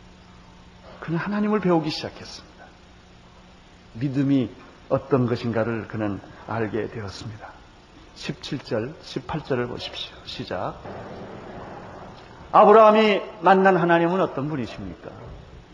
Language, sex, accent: Korean, male, native